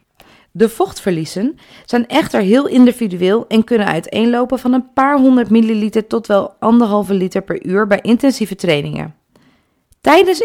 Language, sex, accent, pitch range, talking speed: Dutch, female, Dutch, 195-270 Hz, 140 wpm